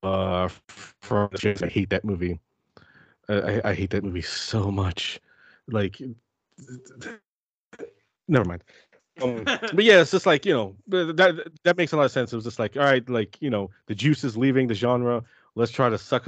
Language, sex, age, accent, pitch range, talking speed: English, male, 30-49, American, 100-125 Hz, 185 wpm